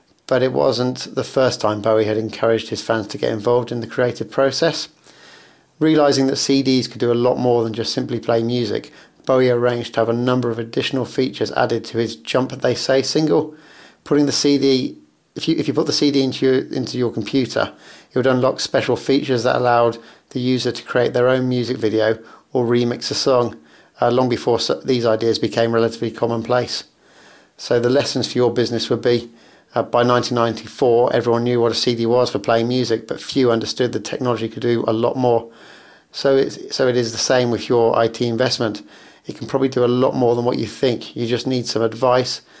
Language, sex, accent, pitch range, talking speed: English, male, British, 115-130 Hz, 205 wpm